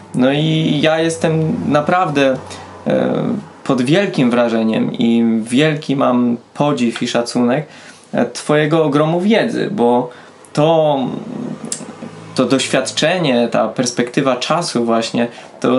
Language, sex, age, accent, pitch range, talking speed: Polish, male, 20-39, native, 130-170 Hz, 100 wpm